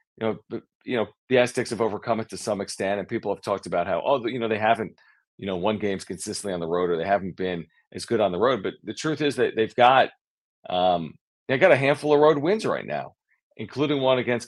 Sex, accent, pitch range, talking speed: male, American, 95-120 Hz, 255 wpm